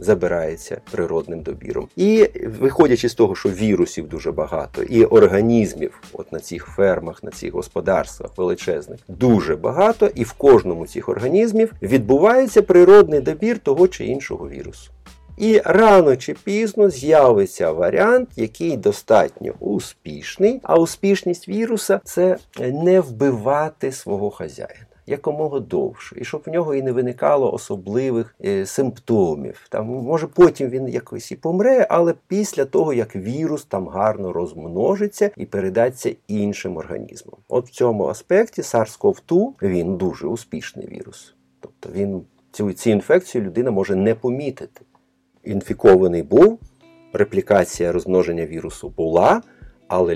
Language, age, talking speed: Ukrainian, 50-69, 130 wpm